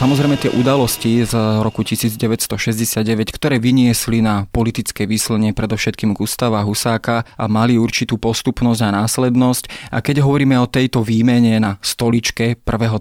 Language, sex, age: Slovak, male, 20-39